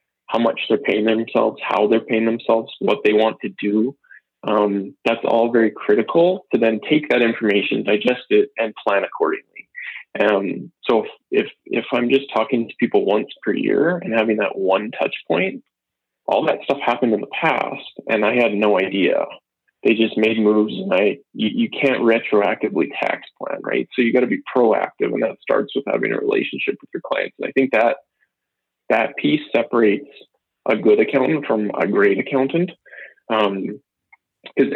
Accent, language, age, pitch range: American, English, 20-39, 110-145 Hz